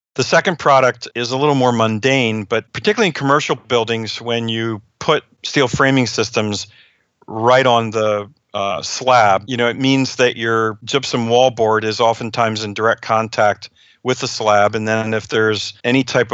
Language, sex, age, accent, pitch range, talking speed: English, male, 50-69, American, 110-130 Hz, 170 wpm